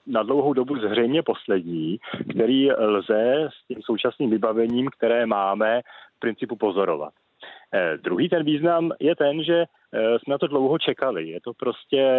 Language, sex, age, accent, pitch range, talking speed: Czech, male, 40-59, native, 95-115 Hz, 160 wpm